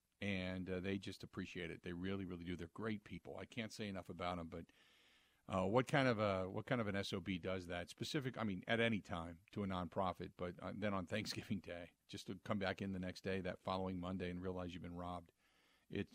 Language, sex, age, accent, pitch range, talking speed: English, male, 50-69, American, 95-125 Hz, 235 wpm